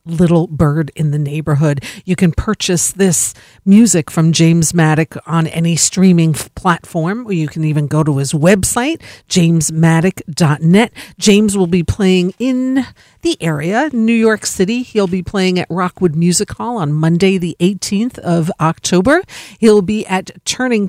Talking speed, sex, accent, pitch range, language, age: 150 wpm, female, American, 155-195 Hz, English, 50-69